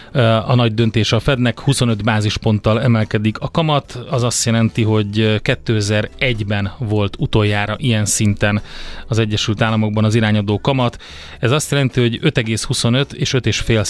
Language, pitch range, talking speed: Hungarian, 110-135 Hz, 140 wpm